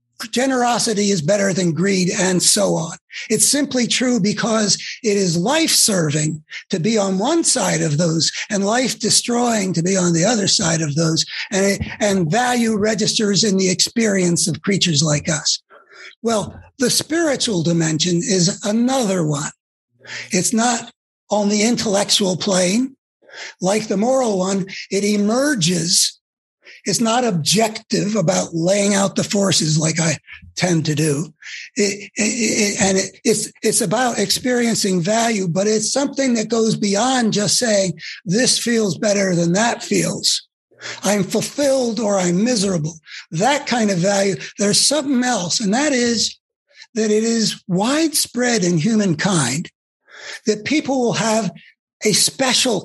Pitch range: 185-230 Hz